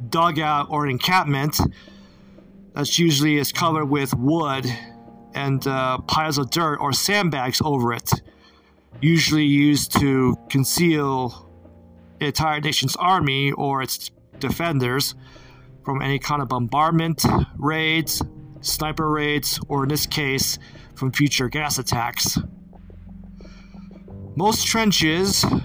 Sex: male